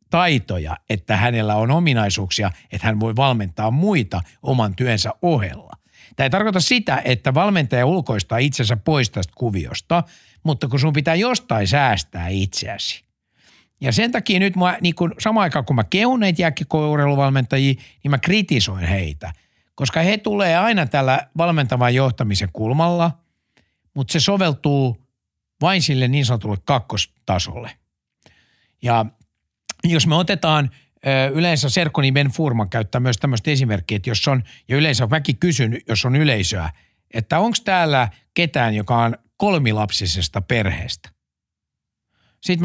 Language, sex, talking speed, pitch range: Finnish, male, 130 wpm, 110-160 Hz